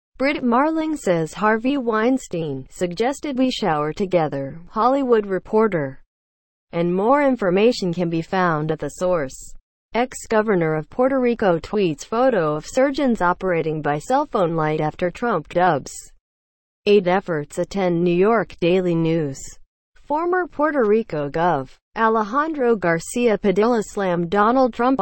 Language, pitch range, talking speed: English, 160-225 Hz, 125 wpm